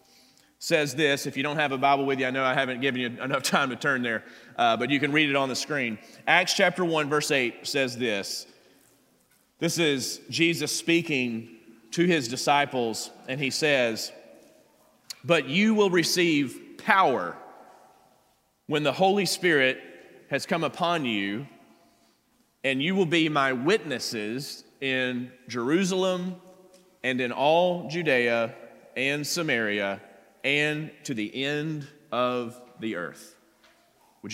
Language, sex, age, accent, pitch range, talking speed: English, male, 30-49, American, 115-155 Hz, 145 wpm